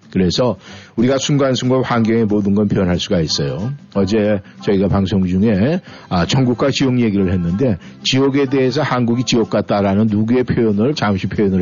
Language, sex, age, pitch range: Korean, male, 50-69, 100-130 Hz